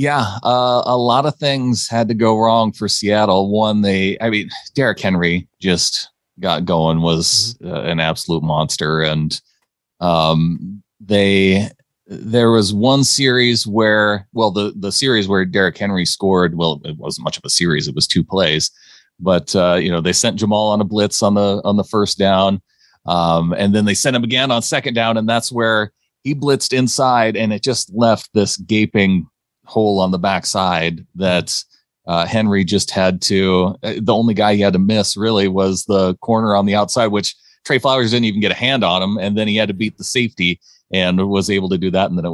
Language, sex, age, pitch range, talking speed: English, male, 30-49, 95-115 Hz, 200 wpm